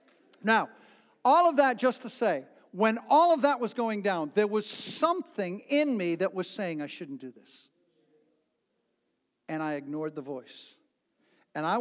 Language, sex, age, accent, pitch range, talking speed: English, male, 60-79, American, 155-235 Hz, 170 wpm